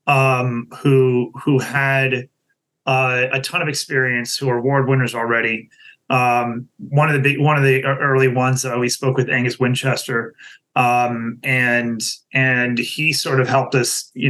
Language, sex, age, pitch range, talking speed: English, male, 30-49, 125-140 Hz, 170 wpm